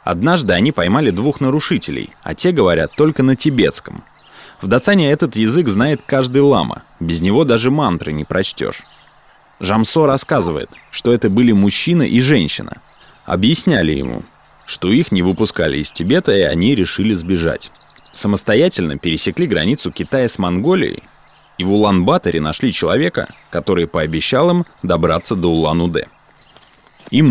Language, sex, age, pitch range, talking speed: Russian, male, 20-39, 85-140 Hz, 135 wpm